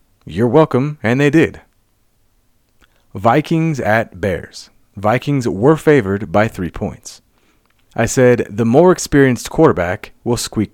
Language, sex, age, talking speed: English, male, 30-49, 125 wpm